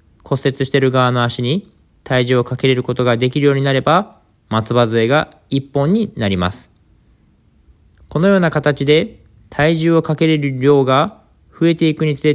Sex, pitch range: male, 110-155 Hz